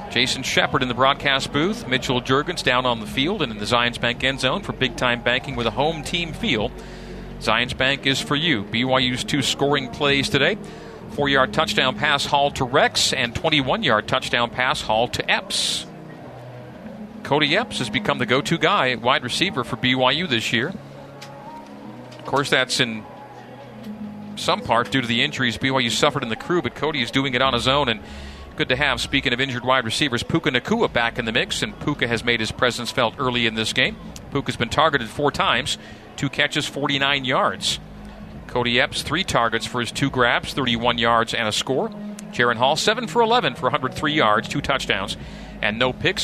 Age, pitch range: 40-59, 120-150 Hz